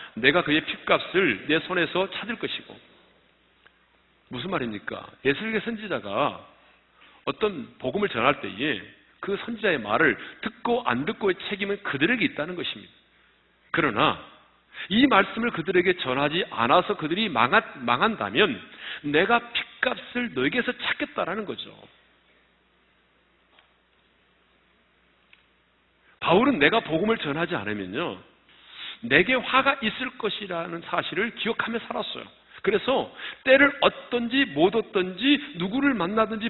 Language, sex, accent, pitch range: Korean, male, native, 175-235 Hz